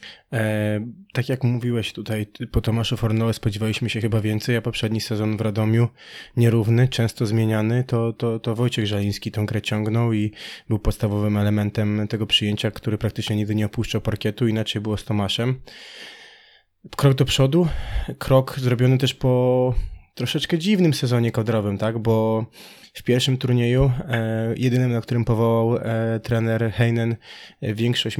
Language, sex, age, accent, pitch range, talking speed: Polish, male, 20-39, native, 110-120 Hz, 140 wpm